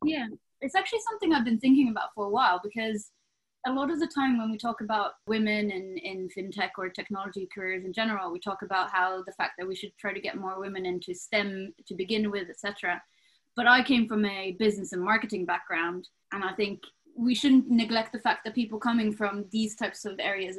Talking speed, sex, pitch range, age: 220 wpm, female, 185-220 Hz, 20-39